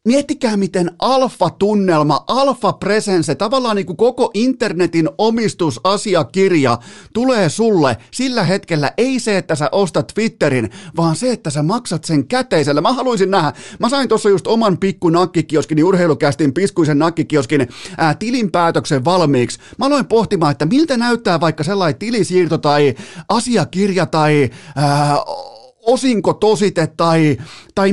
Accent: native